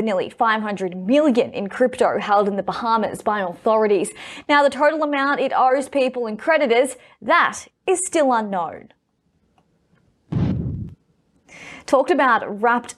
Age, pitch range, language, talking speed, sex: 20-39, 205-275 Hz, English, 125 wpm, female